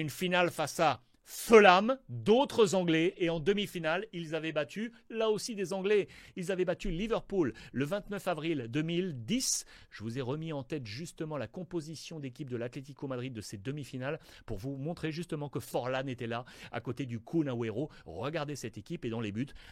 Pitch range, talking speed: 140-185 Hz, 185 wpm